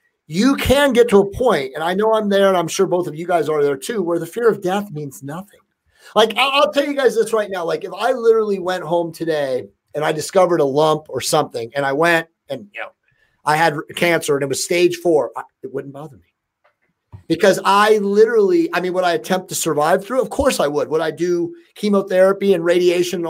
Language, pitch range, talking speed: English, 170-225 Hz, 235 wpm